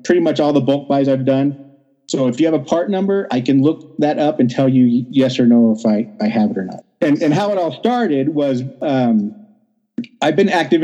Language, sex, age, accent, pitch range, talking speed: English, male, 40-59, American, 135-175 Hz, 245 wpm